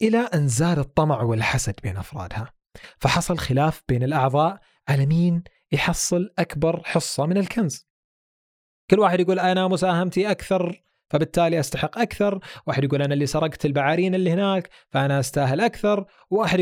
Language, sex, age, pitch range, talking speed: Arabic, male, 30-49, 130-180 Hz, 135 wpm